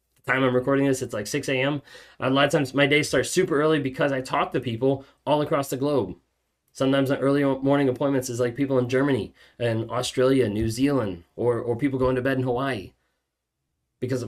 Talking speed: 205 wpm